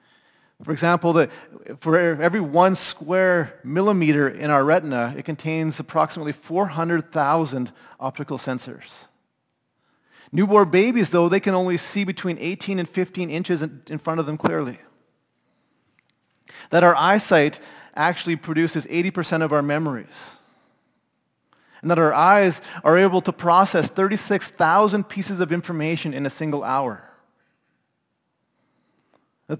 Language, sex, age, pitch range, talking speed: English, male, 30-49, 145-180 Hz, 120 wpm